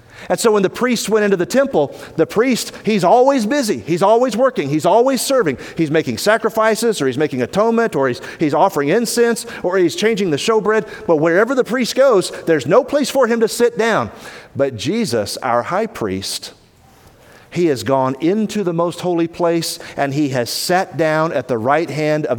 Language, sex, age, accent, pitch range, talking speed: English, male, 40-59, American, 155-225 Hz, 195 wpm